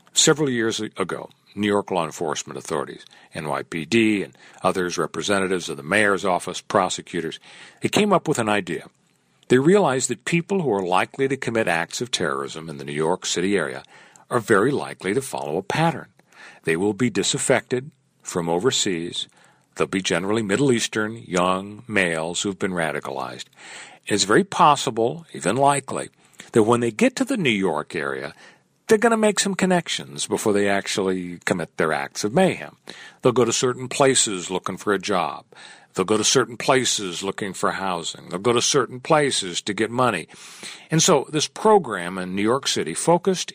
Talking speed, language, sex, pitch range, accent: 175 wpm, English, male, 100-160 Hz, American